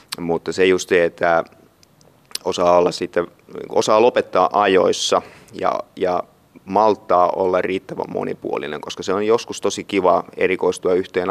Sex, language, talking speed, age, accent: male, Finnish, 135 wpm, 30-49, native